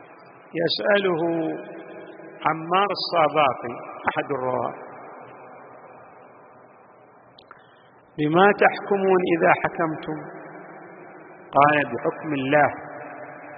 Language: Arabic